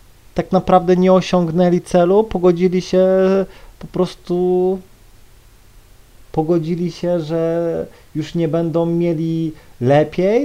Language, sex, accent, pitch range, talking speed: Polish, male, native, 115-175 Hz, 100 wpm